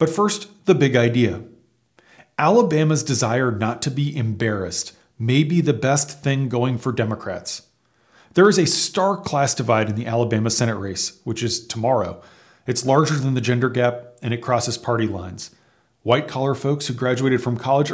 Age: 40-59